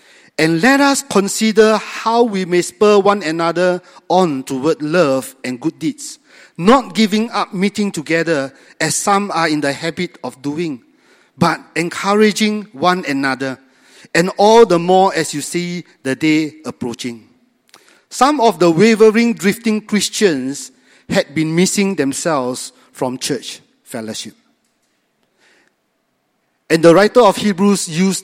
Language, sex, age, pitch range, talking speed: English, male, 50-69, 150-205 Hz, 130 wpm